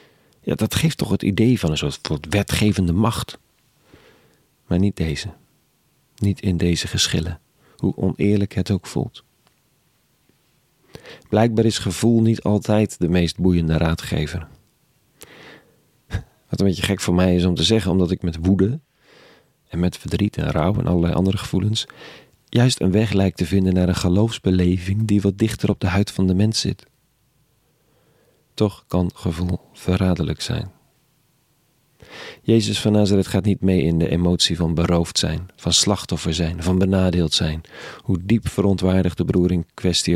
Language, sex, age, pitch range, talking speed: Dutch, male, 40-59, 90-110 Hz, 155 wpm